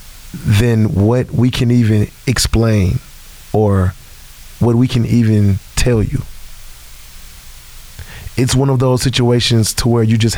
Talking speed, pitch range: 125 wpm, 100-125 Hz